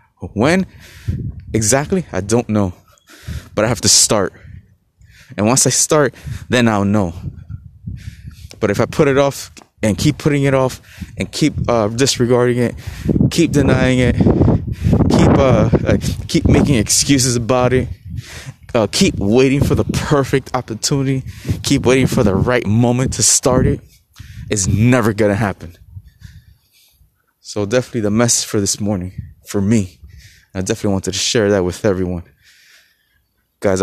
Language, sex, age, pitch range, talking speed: English, male, 20-39, 95-125 Hz, 145 wpm